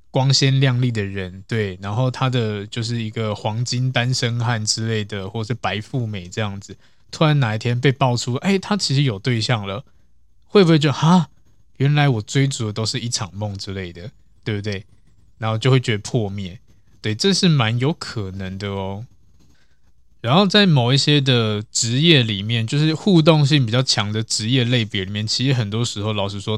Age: 20-39